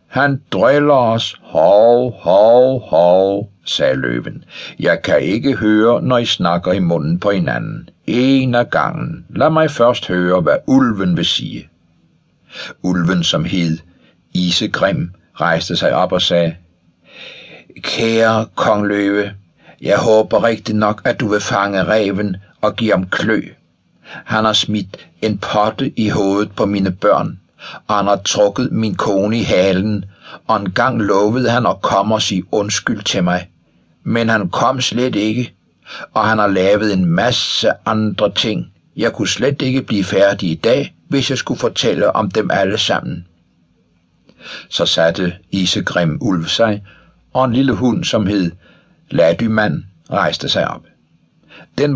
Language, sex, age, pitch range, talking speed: Danish, male, 60-79, 90-120 Hz, 150 wpm